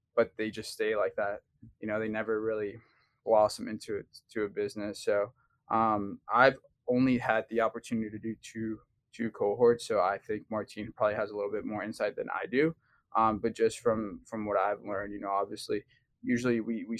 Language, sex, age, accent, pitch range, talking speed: English, male, 20-39, American, 105-130 Hz, 200 wpm